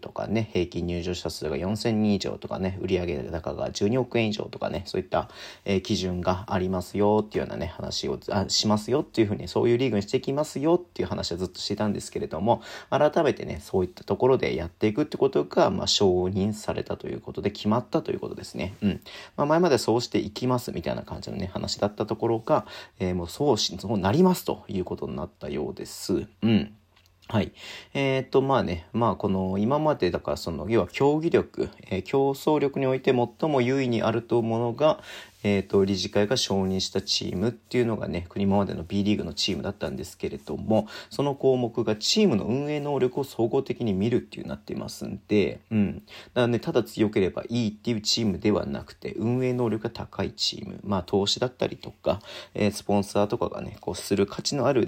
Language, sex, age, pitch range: Japanese, male, 40-59, 100-125 Hz